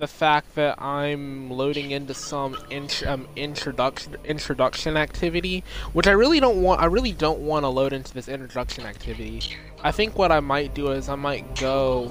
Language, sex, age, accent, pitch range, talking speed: English, male, 20-39, American, 115-145 Hz, 185 wpm